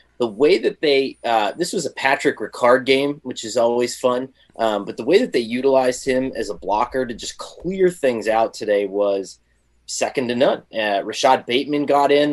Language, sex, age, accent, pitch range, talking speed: English, male, 20-39, American, 105-140 Hz, 200 wpm